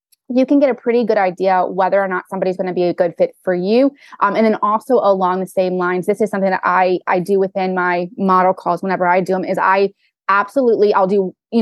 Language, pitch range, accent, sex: English, 185-225 Hz, American, female